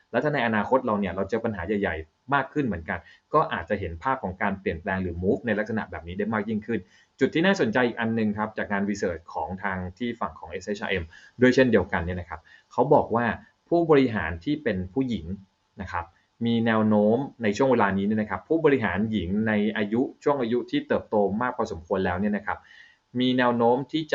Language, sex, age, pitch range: Thai, male, 20-39, 95-115 Hz